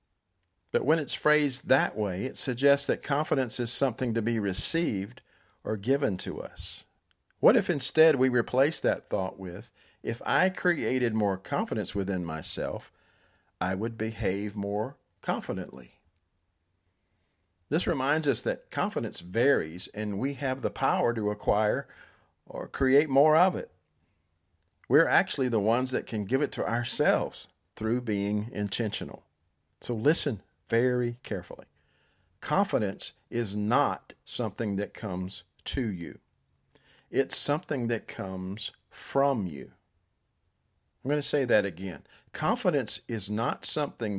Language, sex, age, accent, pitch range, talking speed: English, male, 50-69, American, 95-120 Hz, 135 wpm